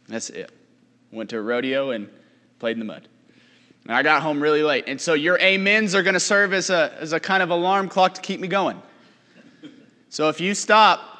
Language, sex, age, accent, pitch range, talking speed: English, male, 30-49, American, 140-200 Hz, 210 wpm